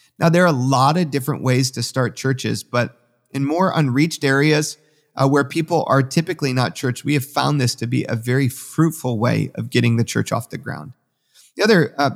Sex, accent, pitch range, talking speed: male, American, 120-150 Hz, 210 wpm